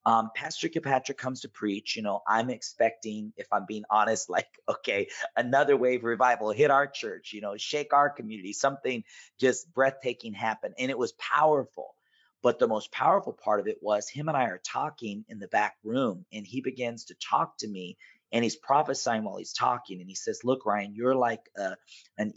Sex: male